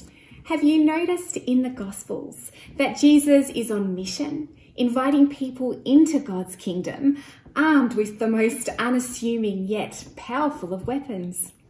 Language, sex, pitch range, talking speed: English, female, 200-260 Hz, 130 wpm